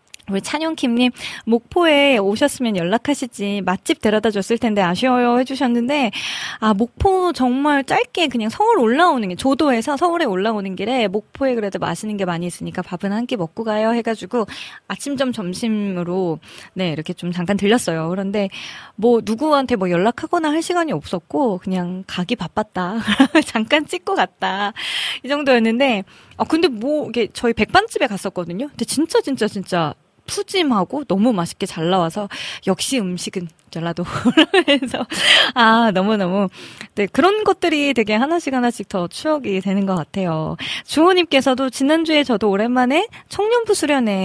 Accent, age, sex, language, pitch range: native, 20-39, female, Korean, 190-275 Hz